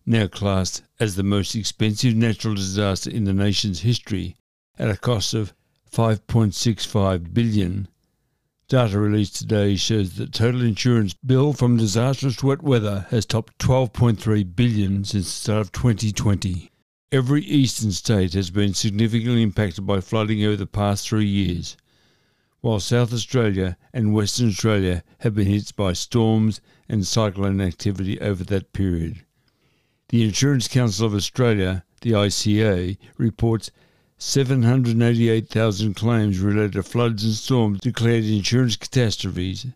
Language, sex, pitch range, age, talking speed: English, male, 100-115 Hz, 60-79, 135 wpm